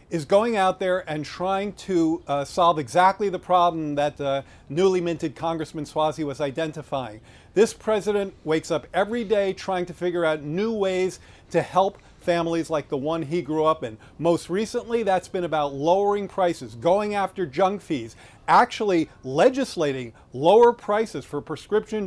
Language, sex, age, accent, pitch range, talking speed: English, male, 40-59, American, 145-190 Hz, 160 wpm